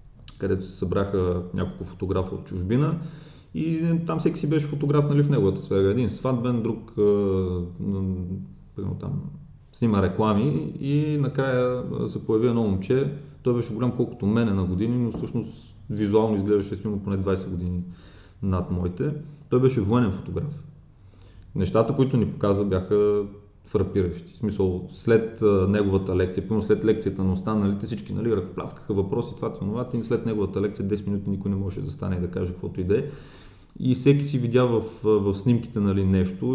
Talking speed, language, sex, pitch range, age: 165 wpm, Bulgarian, male, 95-115 Hz, 30-49